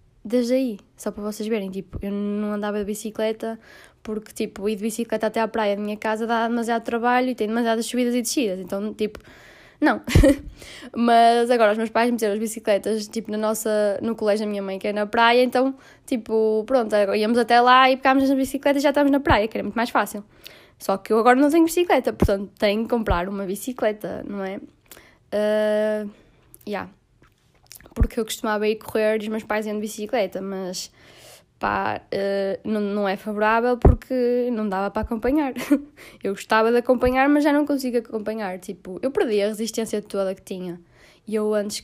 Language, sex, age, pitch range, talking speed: Portuguese, female, 10-29, 210-250 Hz, 195 wpm